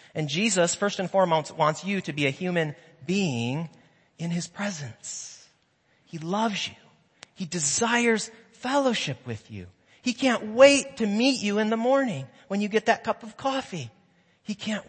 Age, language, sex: 30-49, English, male